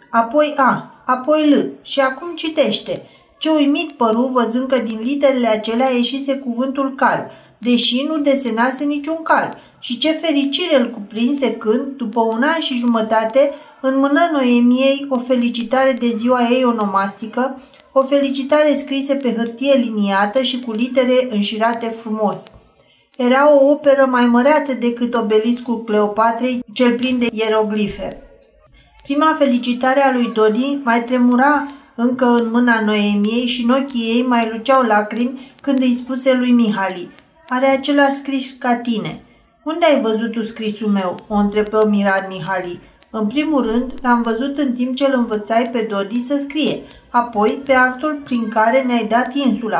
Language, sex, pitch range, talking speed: Romanian, female, 225-275 Hz, 150 wpm